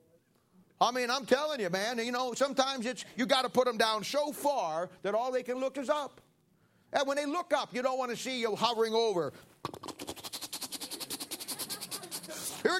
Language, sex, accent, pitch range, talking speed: English, male, American, 160-225 Hz, 185 wpm